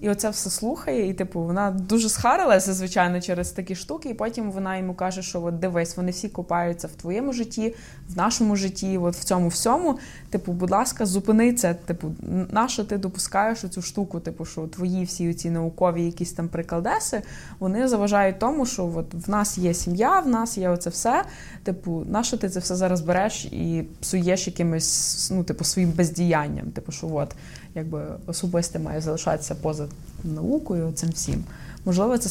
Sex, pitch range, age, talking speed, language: female, 170-215 Hz, 20-39, 175 wpm, Ukrainian